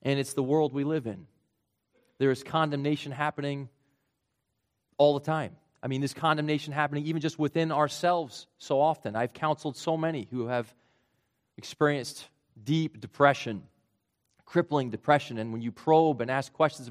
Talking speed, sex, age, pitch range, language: 155 wpm, male, 30-49, 130-155 Hz, English